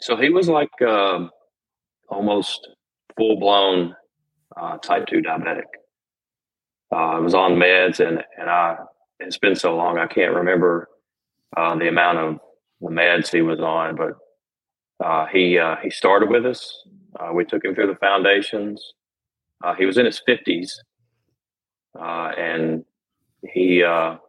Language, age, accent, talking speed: English, 30-49, American, 150 wpm